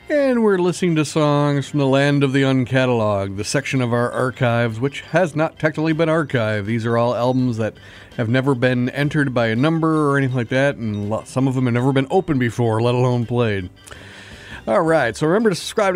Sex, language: male, English